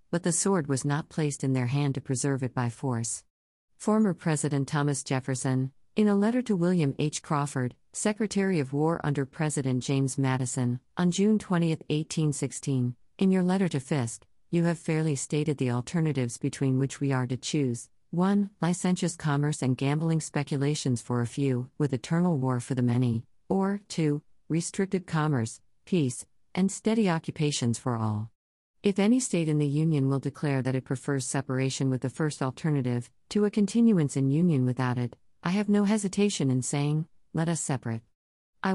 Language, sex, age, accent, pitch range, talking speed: English, female, 50-69, American, 130-165 Hz, 170 wpm